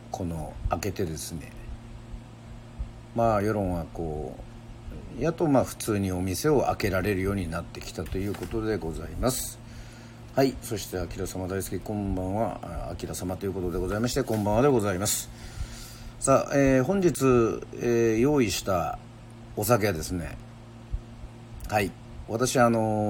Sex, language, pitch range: male, Japanese, 95-120 Hz